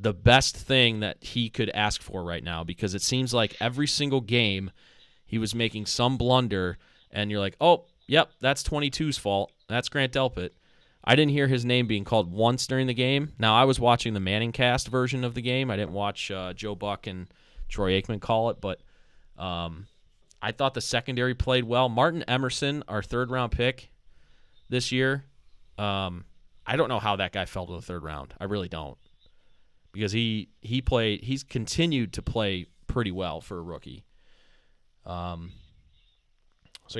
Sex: male